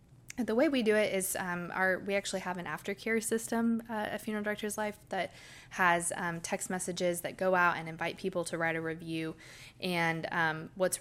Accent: American